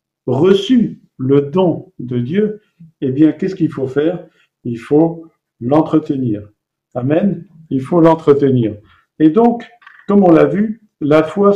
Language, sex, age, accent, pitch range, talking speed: French, male, 50-69, French, 135-175 Hz, 135 wpm